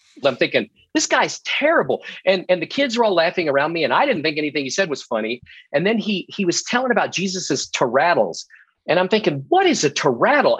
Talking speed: 220 wpm